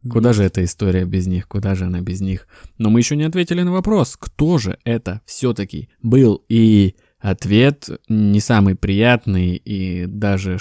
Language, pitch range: Russian, 95-115 Hz